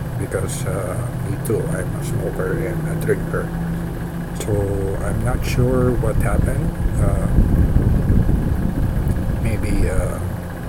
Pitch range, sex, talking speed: 90-115 Hz, male, 105 wpm